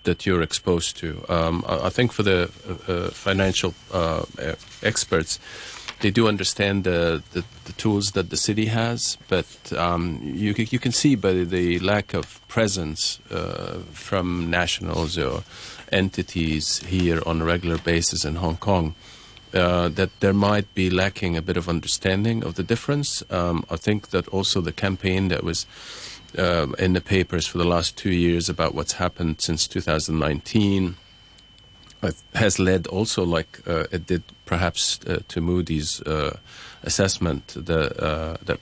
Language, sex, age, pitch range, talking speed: English, male, 40-59, 85-100 Hz, 155 wpm